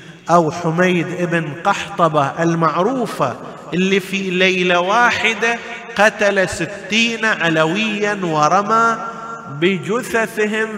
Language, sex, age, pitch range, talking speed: Arabic, male, 50-69, 140-190 Hz, 80 wpm